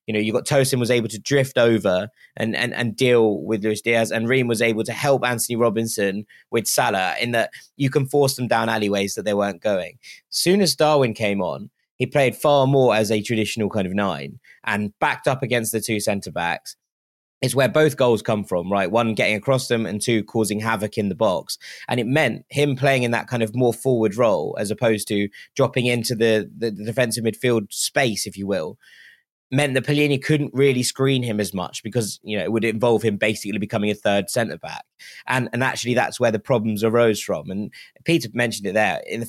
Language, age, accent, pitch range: English, 20-39, British, 105-130 Hz